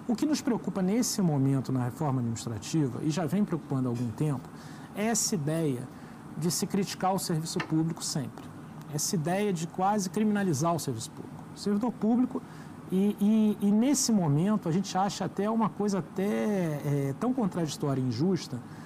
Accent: Brazilian